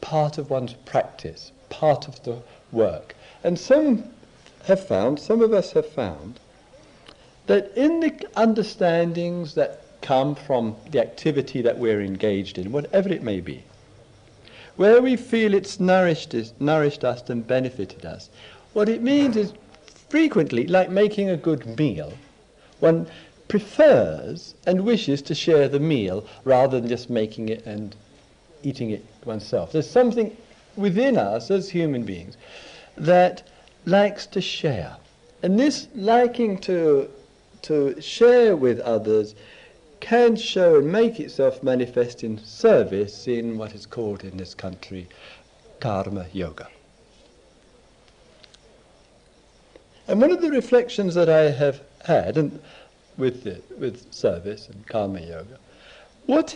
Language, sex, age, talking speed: English, male, 60-79, 135 wpm